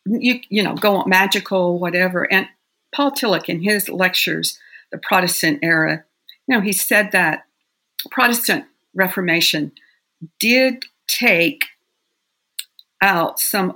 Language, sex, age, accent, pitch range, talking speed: English, female, 50-69, American, 165-200 Hz, 120 wpm